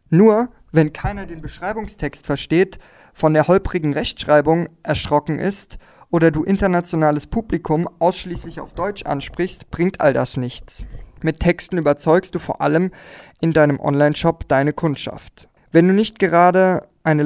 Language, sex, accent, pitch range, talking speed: German, male, German, 140-175 Hz, 140 wpm